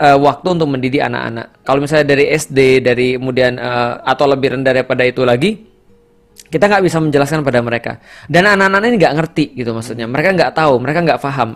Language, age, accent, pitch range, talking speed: Indonesian, 20-39, native, 130-180 Hz, 185 wpm